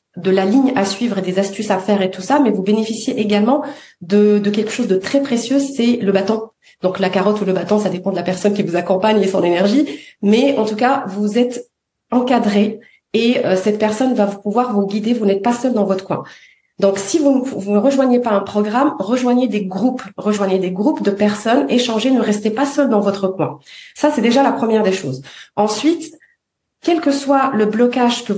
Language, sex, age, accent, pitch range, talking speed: French, female, 30-49, French, 205-275 Hz, 220 wpm